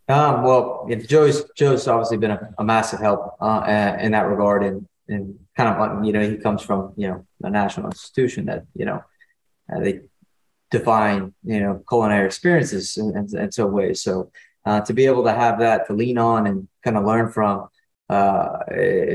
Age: 20-39